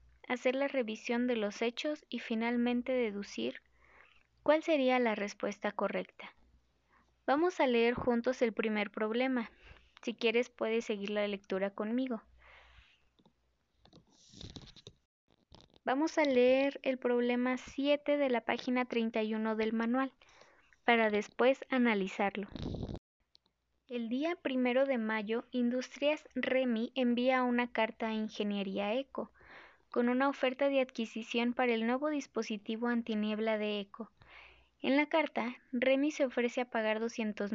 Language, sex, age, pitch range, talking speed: Spanish, female, 20-39, 220-260 Hz, 125 wpm